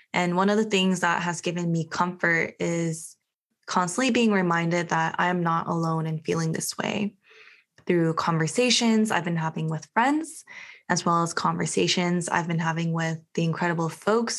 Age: 20-39